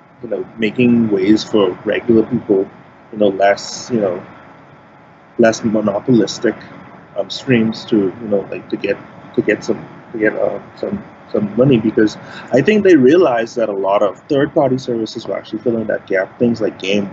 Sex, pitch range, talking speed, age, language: male, 110-130 Hz, 175 wpm, 30-49, English